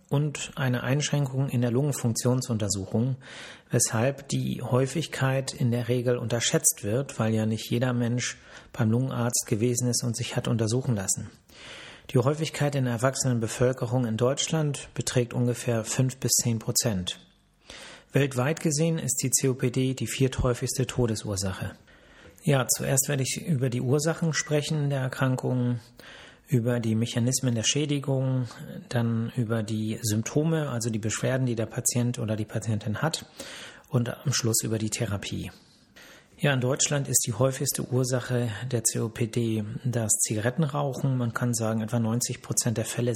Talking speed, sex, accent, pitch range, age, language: 145 wpm, male, German, 115-135 Hz, 40-59, German